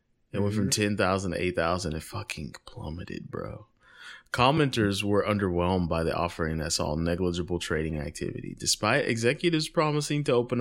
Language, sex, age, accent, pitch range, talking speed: English, male, 20-39, American, 90-120 Hz, 145 wpm